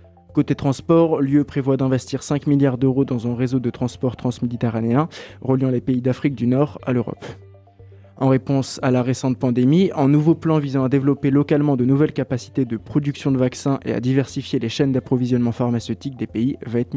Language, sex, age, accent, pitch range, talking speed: French, male, 20-39, French, 125-145 Hz, 190 wpm